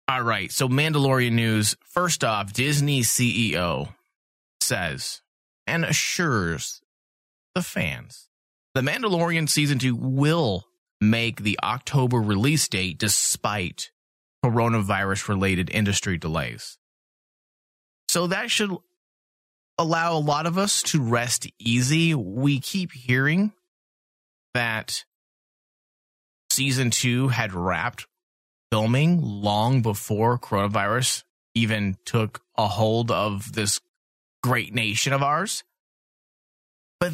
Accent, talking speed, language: American, 100 wpm, English